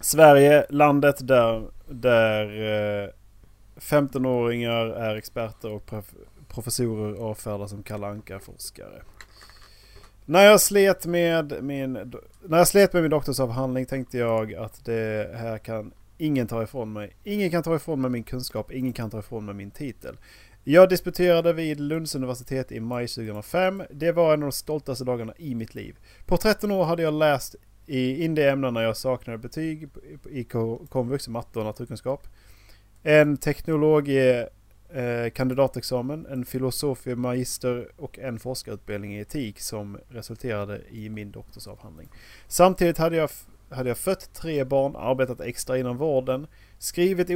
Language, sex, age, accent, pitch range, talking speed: Swedish, male, 30-49, Norwegian, 110-150 Hz, 145 wpm